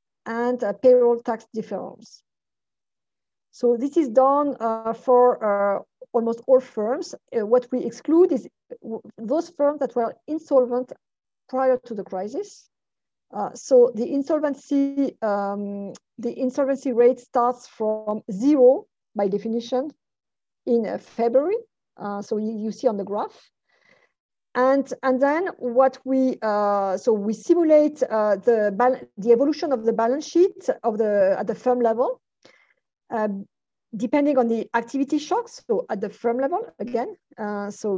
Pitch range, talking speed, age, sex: 225-280 Hz, 140 wpm, 50-69, female